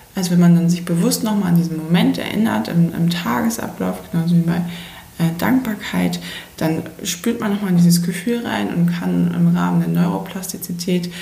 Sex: female